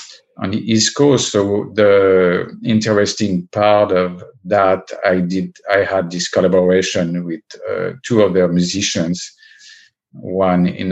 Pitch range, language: 90-120 Hz, English